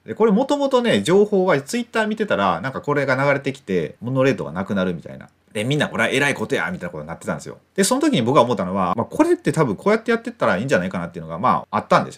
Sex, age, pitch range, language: male, 30-49, 130-205 Hz, Japanese